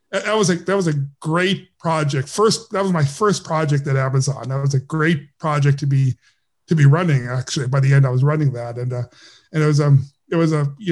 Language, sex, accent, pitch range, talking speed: English, male, American, 140-195 Hz, 240 wpm